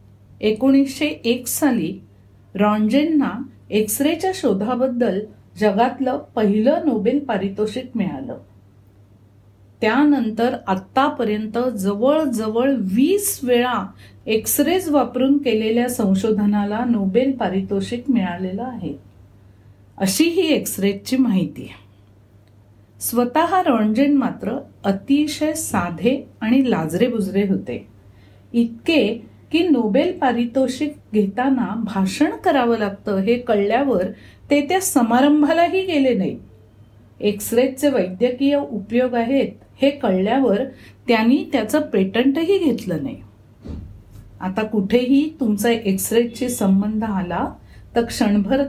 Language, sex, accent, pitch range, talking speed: Marathi, female, native, 195-265 Hz, 80 wpm